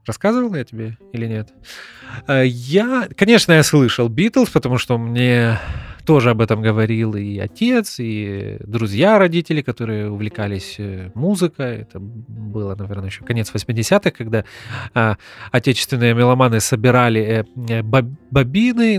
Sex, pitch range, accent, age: male, 110-150 Hz, native, 20-39